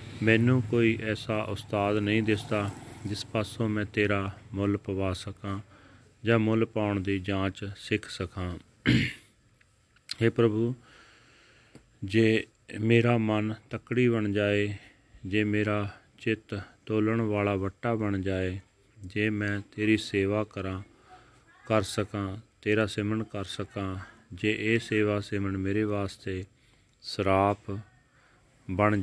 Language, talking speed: Punjabi, 115 wpm